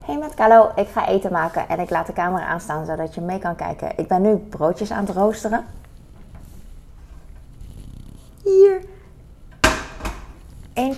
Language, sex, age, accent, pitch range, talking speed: Dutch, female, 20-39, Dutch, 170-230 Hz, 150 wpm